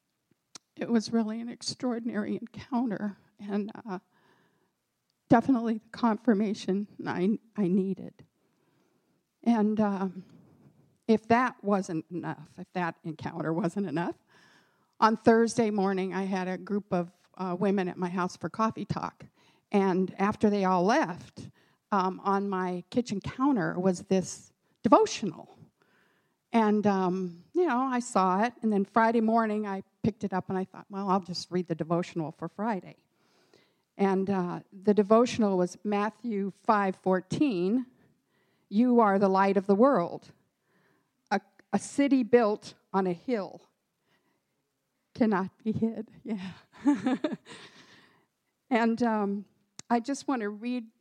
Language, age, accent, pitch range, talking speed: English, 50-69, American, 185-225 Hz, 130 wpm